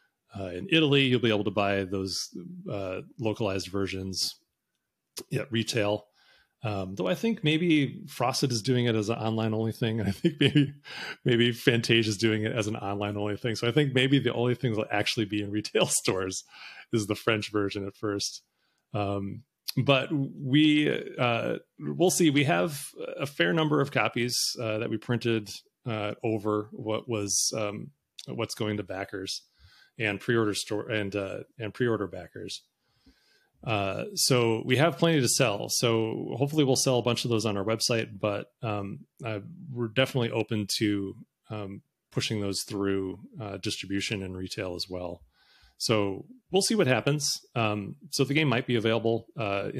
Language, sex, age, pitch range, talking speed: English, male, 30-49, 105-135 Hz, 170 wpm